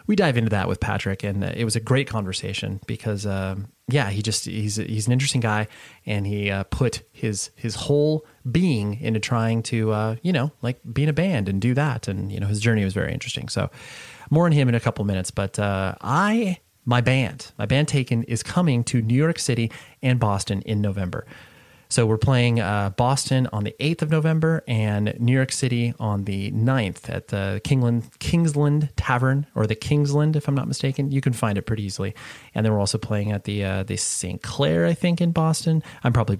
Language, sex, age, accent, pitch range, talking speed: English, male, 30-49, American, 105-135 Hz, 215 wpm